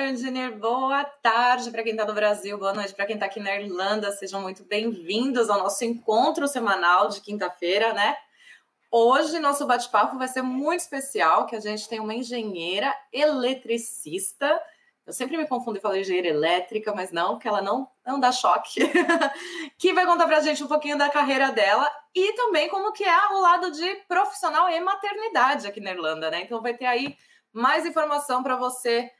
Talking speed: 185 wpm